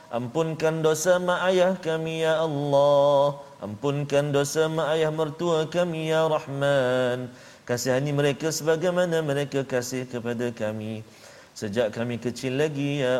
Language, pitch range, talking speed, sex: Malayalam, 135-170 Hz, 125 wpm, male